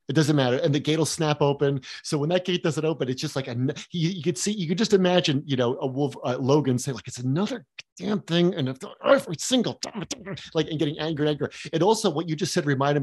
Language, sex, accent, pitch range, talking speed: English, male, American, 130-185 Hz, 250 wpm